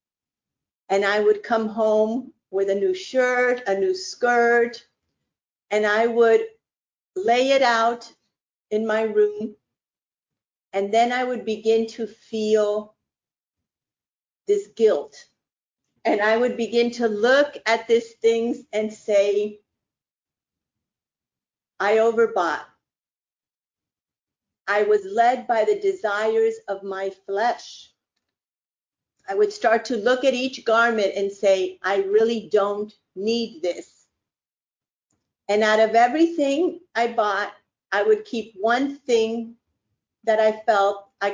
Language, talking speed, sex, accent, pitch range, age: English, 120 wpm, female, American, 205-245 Hz, 50-69